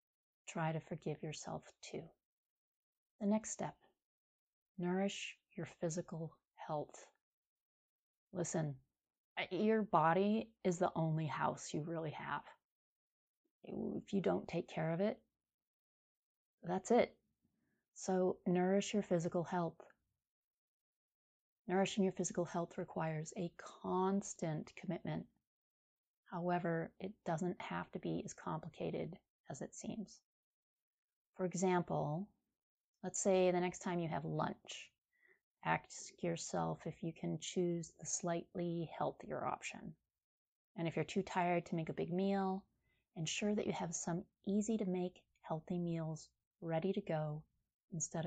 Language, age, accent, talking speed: English, 30-49, American, 125 wpm